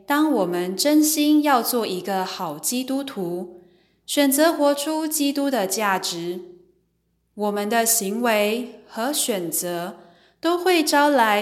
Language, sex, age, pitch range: Chinese, female, 20-39, 180-235 Hz